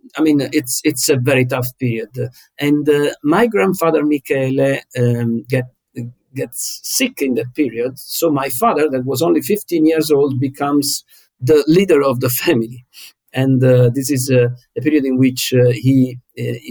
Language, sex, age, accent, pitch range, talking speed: English, male, 50-69, Italian, 125-160 Hz, 170 wpm